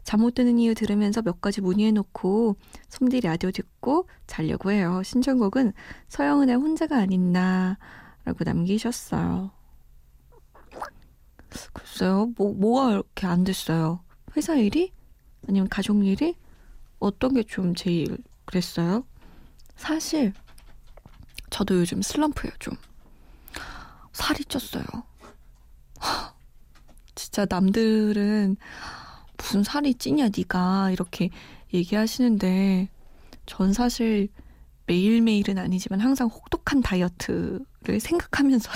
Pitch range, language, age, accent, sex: 180-245 Hz, Korean, 20-39, native, female